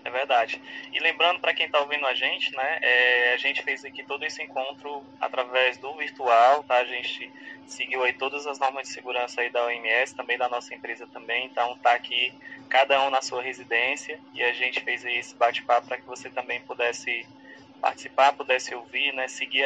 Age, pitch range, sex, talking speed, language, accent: 20-39, 125-140 Hz, male, 195 wpm, Portuguese, Brazilian